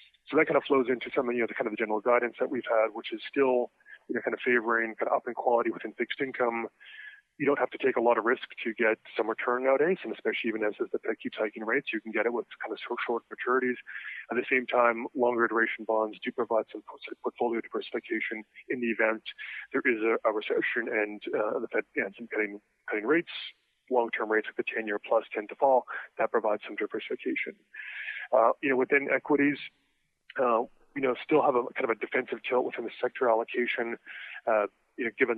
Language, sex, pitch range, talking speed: English, male, 110-135 Hz, 230 wpm